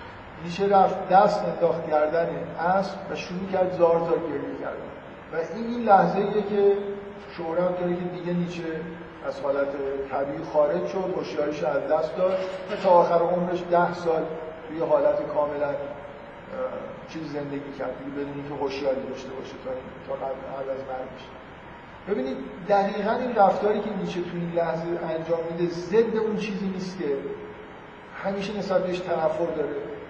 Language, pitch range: Persian, 160-195 Hz